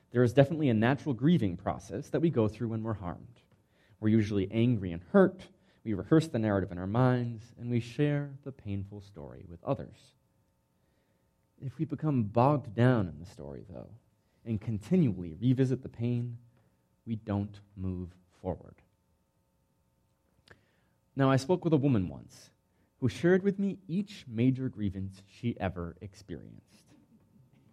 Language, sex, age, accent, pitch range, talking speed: English, male, 30-49, American, 100-135 Hz, 150 wpm